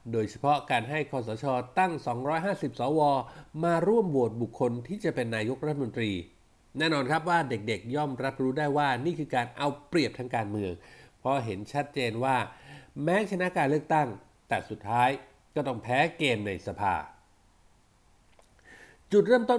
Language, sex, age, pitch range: Thai, male, 60-79, 115-150 Hz